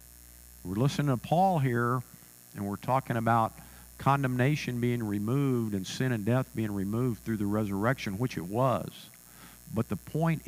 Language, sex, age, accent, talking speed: English, male, 50-69, American, 155 wpm